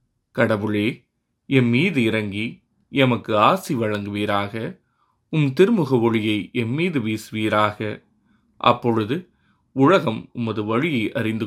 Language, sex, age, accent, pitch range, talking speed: Tamil, male, 30-49, native, 105-125 Hz, 85 wpm